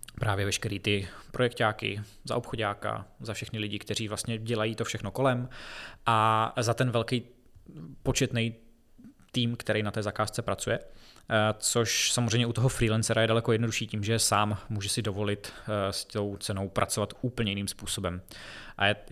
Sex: male